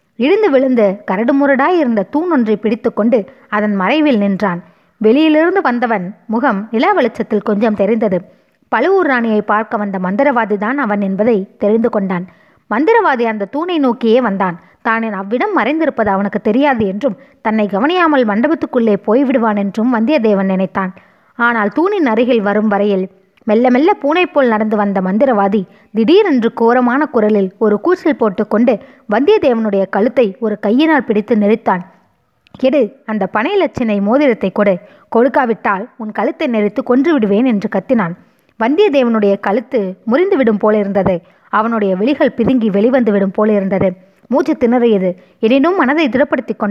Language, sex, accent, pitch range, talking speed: Tamil, female, native, 205-270 Hz, 115 wpm